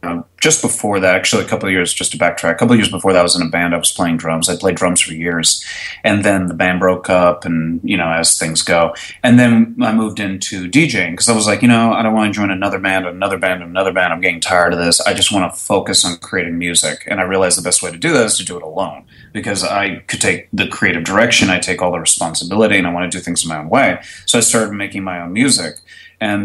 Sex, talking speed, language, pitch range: male, 280 wpm, English, 90-110 Hz